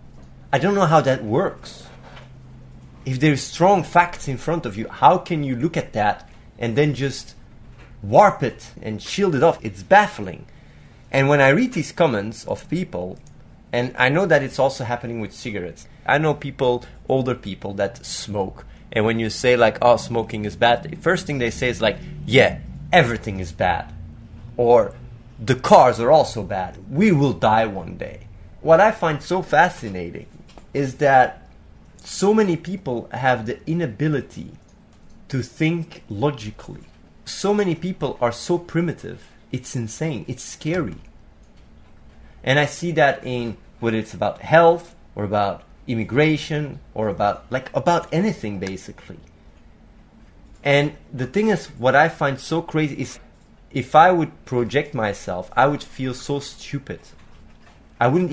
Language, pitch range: English, 110-155 Hz